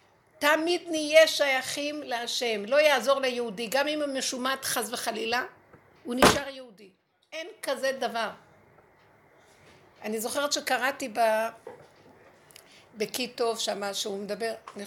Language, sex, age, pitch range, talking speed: Hebrew, female, 60-79, 210-265 Hz, 110 wpm